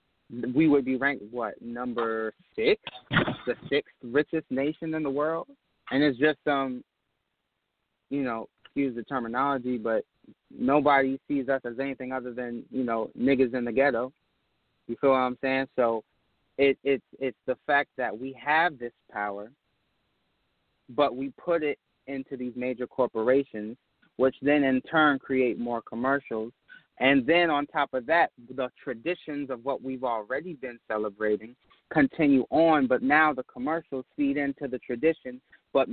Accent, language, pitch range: American, English, 120-145 Hz